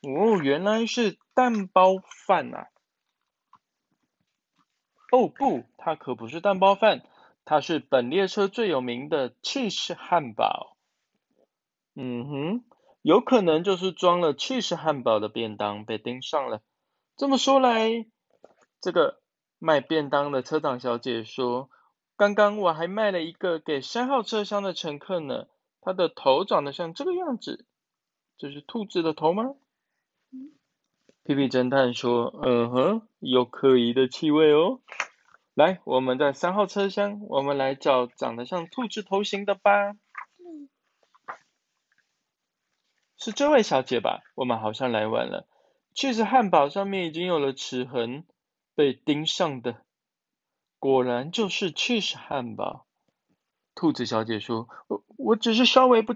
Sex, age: male, 20-39